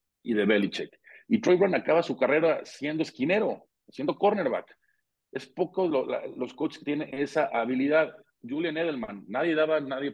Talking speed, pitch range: 155 wpm, 120-155 Hz